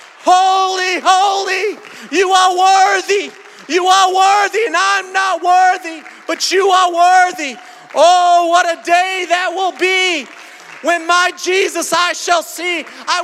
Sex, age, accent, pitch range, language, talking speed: male, 40-59, American, 285-360 Hz, English, 135 wpm